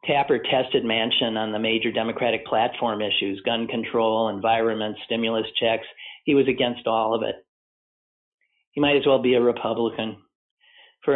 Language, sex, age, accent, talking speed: English, male, 50-69, American, 150 wpm